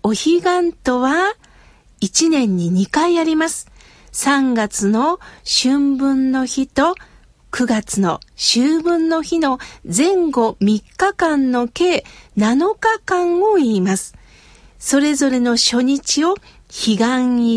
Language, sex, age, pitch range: Japanese, female, 50-69, 245-335 Hz